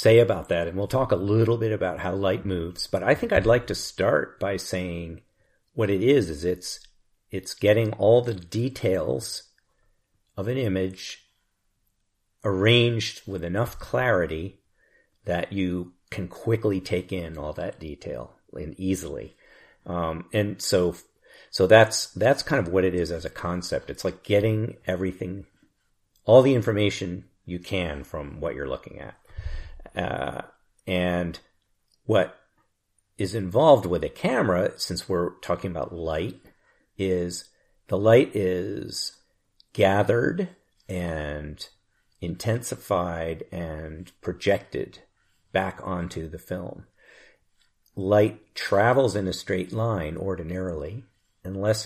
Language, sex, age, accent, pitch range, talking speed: English, male, 50-69, American, 90-105 Hz, 130 wpm